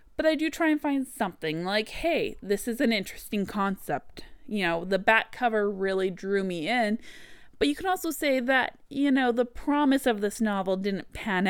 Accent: American